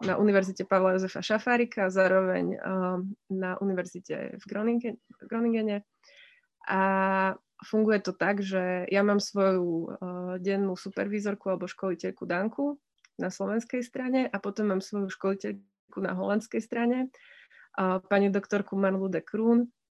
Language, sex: Slovak, female